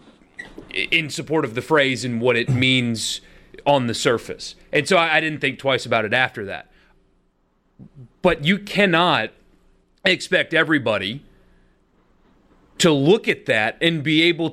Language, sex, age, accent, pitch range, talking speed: English, male, 30-49, American, 130-160 Hz, 140 wpm